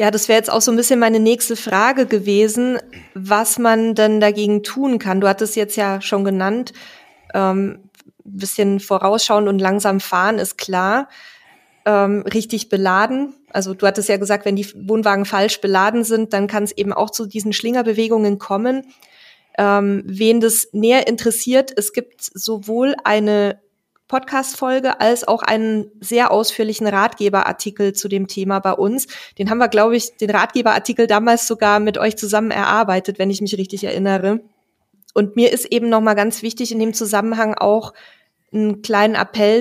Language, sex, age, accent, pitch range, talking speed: German, female, 20-39, German, 205-230 Hz, 165 wpm